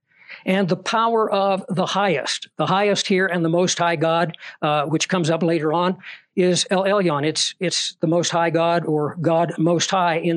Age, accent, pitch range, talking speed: 60-79, American, 155-190 Hz, 195 wpm